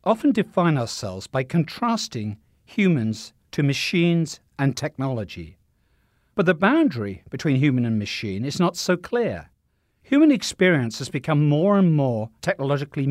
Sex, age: male, 60-79